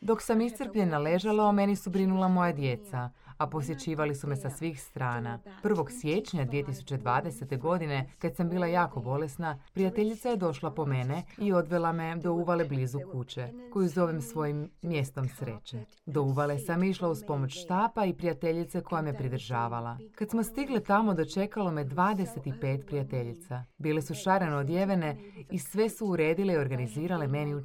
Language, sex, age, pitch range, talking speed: Croatian, female, 30-49, 135-185 Hz, 160 wpm